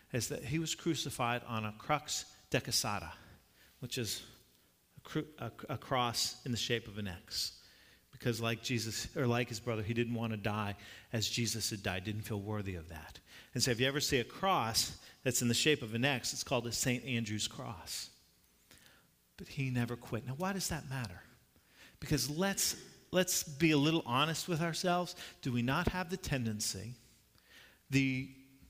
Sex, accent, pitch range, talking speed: male, American, 115-175 Hz, 185 wpm